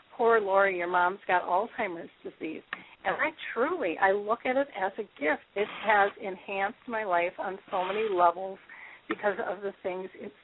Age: 40-59